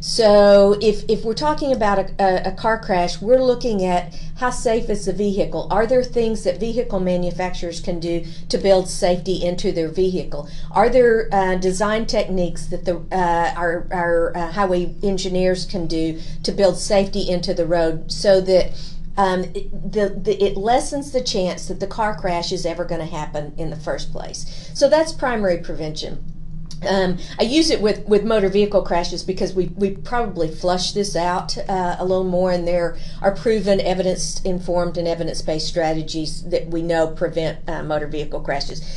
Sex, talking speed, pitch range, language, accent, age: female, 180 wpm, 165-200 Hz, English, American, 50-69